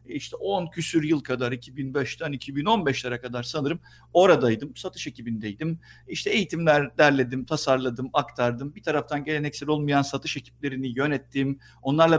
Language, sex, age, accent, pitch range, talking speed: Turkish, male, 50-69, native, 125-170 Hz, 125 wpm